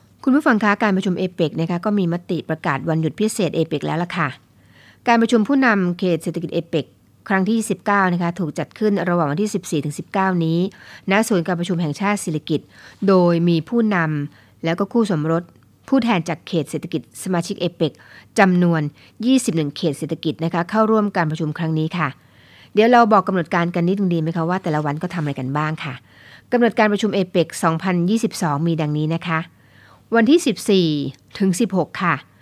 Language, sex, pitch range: Thai, female, 155-195 Hz